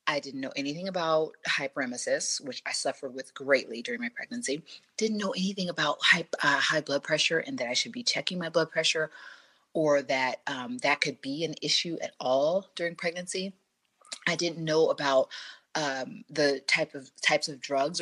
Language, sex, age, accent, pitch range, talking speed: English, female, 30-49, American, 145-200 Hz, 185 wpm